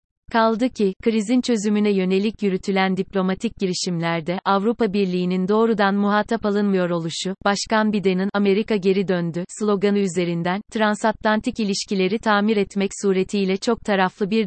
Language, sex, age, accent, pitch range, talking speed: Turkish, female, 30-49, native, 190-220 Hz, 120 wpm